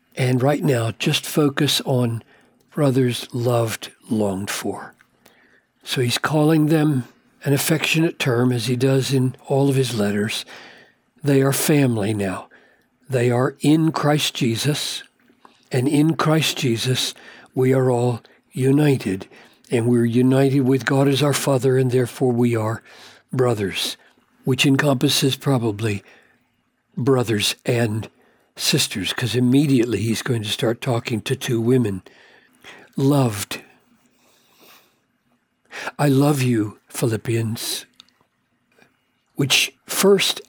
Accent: American